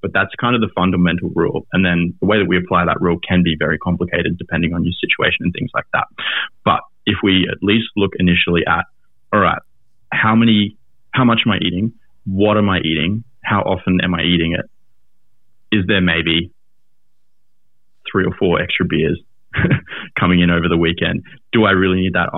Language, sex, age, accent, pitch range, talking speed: English, male, 20-39, Australian, 90-105 Hz, 195 wpm